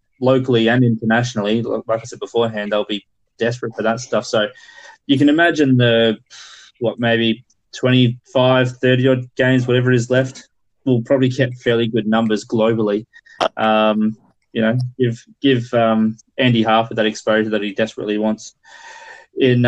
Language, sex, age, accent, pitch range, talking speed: English, male, 20-39, Australian, 110-130 Hz, 150 wpm